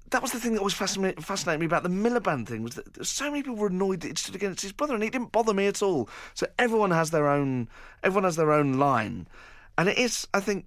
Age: 30-49